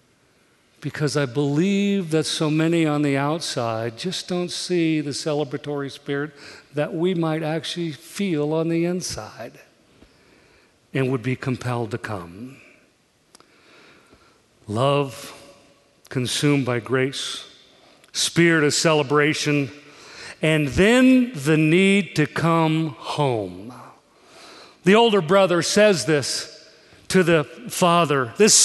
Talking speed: 110 wpm